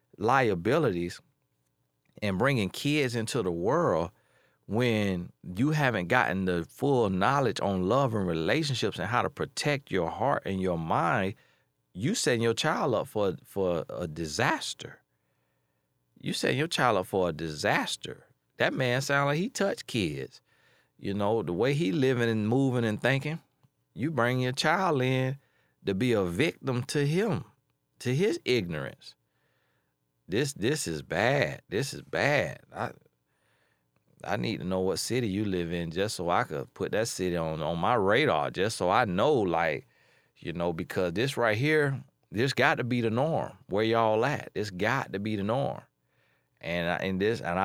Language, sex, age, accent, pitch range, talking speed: English, male, 40-59, American, 85-135 Hz, 170 wpm